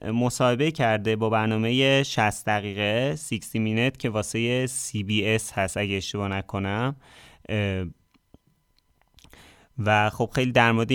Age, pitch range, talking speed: 30-49, 110-135 Hz, 105 wpm